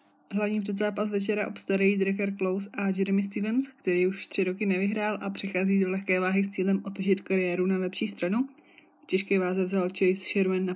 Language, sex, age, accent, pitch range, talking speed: Czech, female, 20-39, native, 180-200 Hz, 180 wpm